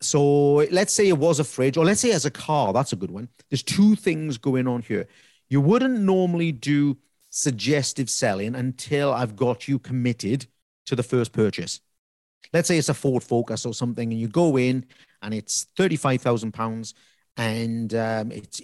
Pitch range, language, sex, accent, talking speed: 115-150 Hz, English, male, British, 180 wpm